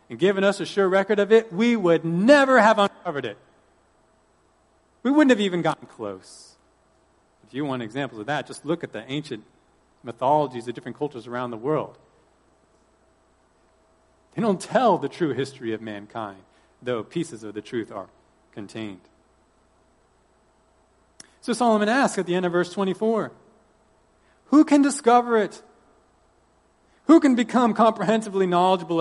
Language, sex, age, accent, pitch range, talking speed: English, male, 40-59, American, 125-195 Hz, 145 wpm